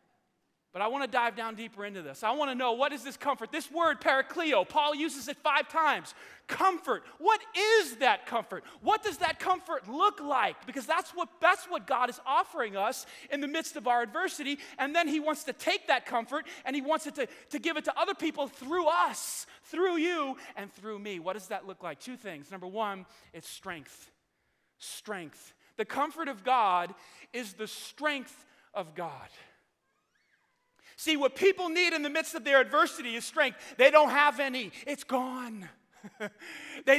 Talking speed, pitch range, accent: 190 wpm, 225-305 Hz, American